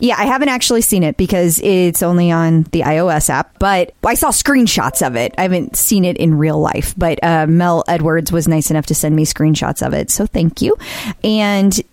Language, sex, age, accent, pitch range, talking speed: English, female, 30-49, American, 165-205 Hz, 215 wpm